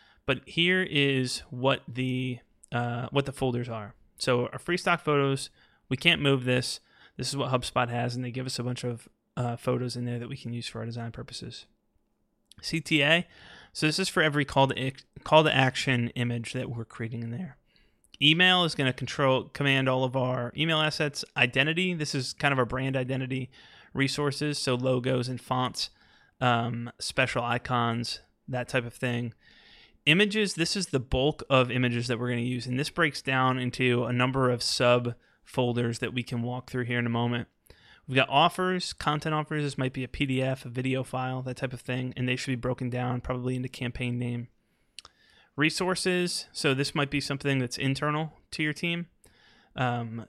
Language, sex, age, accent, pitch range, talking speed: English, male, 20-39, American, 120-140 Hz, 190 wpm